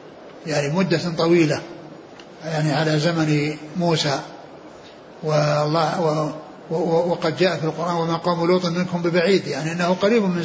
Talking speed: 120 wpm